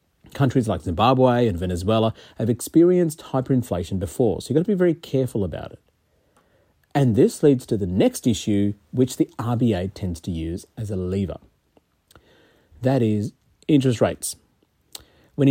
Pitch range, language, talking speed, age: 100-140 Hz, English, 150 wpm, 40-59